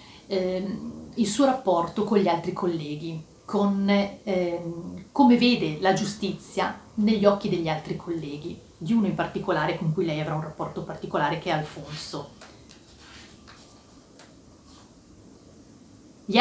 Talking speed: 125 wpm